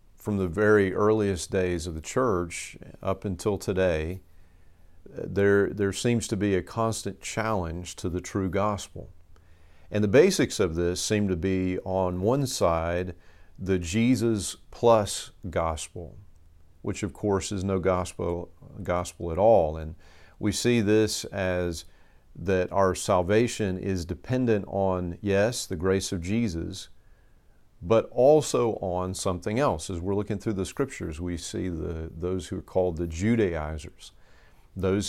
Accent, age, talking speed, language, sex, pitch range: American, 50-69, 145 wpm, English, male, 85-105 Hz